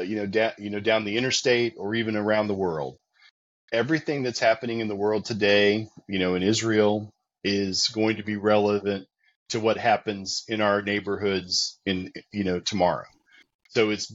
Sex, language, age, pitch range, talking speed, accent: male, English, 40-59, 100-120 Hz, 170 wpm, American